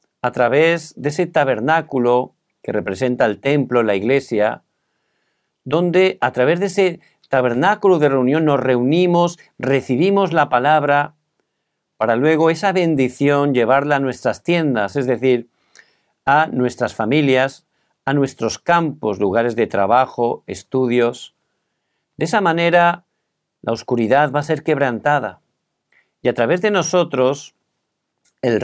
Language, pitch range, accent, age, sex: Korean, 120-165 Hz, Spanish, 50-69, male